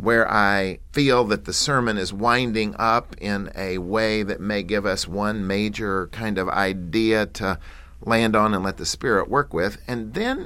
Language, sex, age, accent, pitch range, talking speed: English, male, 50-69, American, 85-130 Hz, 185 wpm